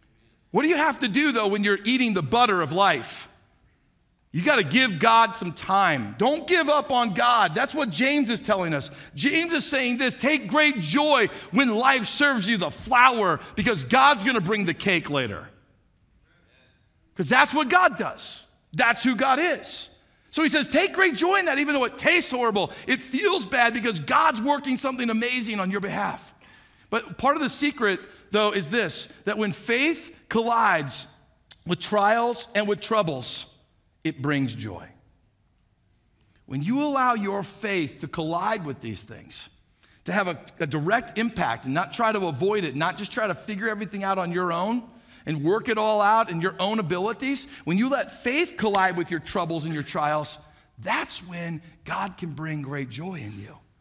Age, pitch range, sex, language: 50-69, 170-260 Hz, male, English